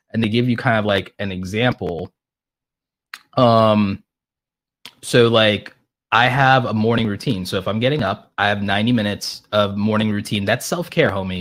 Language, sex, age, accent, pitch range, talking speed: English, male, 20-39, American, 100-125 Hz, 170 wpm